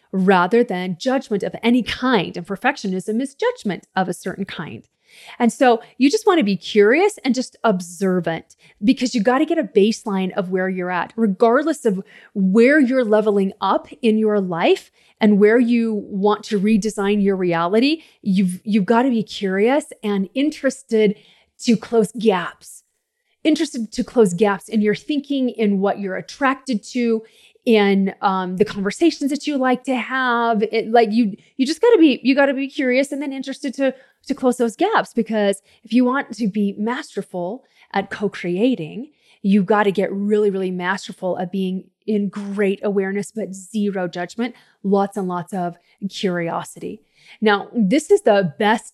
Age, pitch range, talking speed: 30-49, 195-250 Hz, 170 wpm